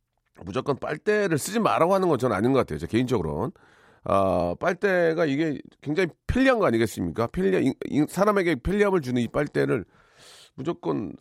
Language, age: Korean, 40-59